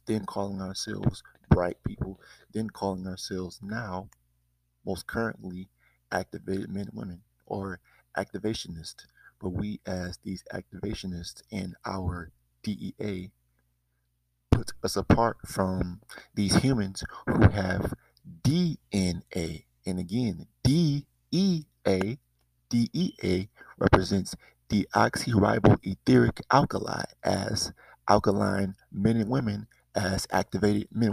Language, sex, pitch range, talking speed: English, male, 90-105 Hz, 95 wpm